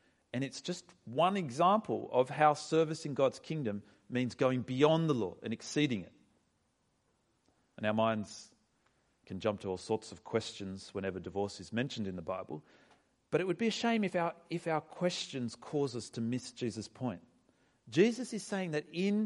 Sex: male